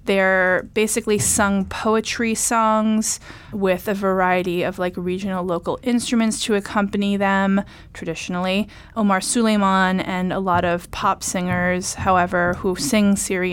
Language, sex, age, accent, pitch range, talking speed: English, female, 30-49, American, 180-210 Hz, 130 wpm